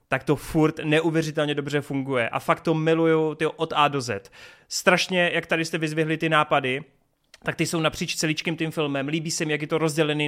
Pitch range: 140-160 Hz